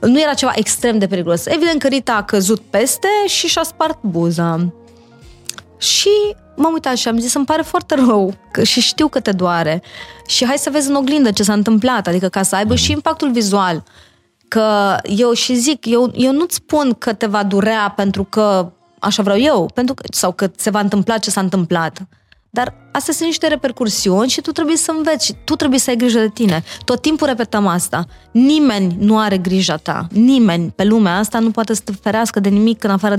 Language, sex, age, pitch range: Romanian, female, 20-39, 195-260 Hz